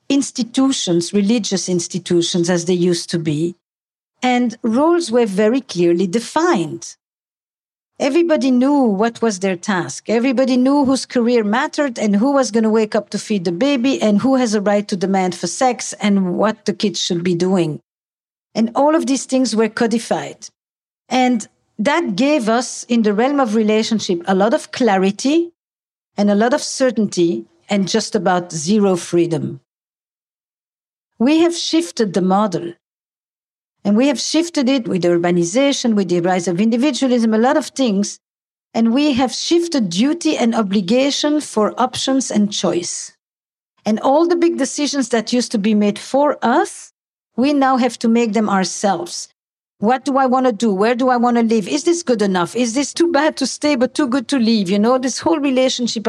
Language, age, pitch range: English, 50-69, 205-270 Hz